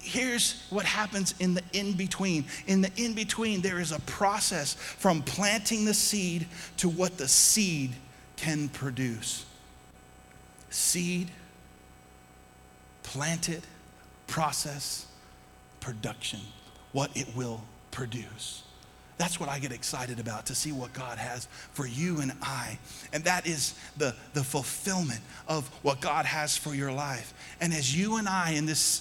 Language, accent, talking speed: English, American, 135 wpm